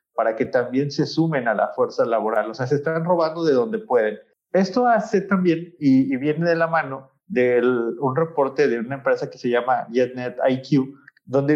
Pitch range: 135-175 Hz